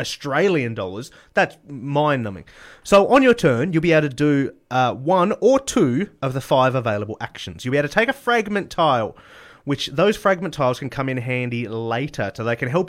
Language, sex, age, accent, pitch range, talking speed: English, male, 30-49, Australian, 120-160 Hz, 200 wpm